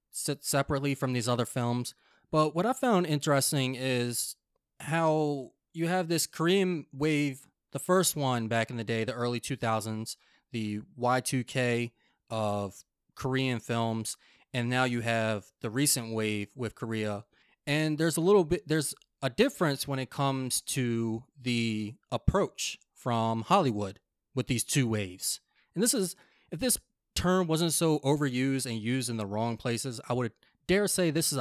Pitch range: 115-155 Hz